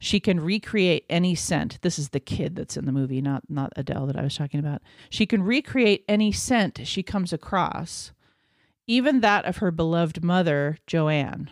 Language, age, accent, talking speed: English, 40-59, American, 190 wpm